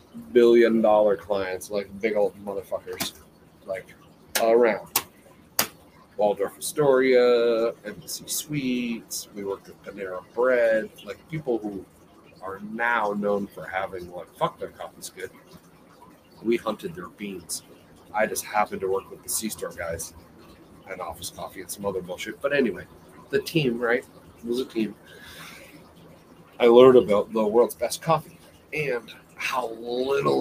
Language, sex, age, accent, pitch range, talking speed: English, male, 40-59, American, 100-125 Hz, 140 wpm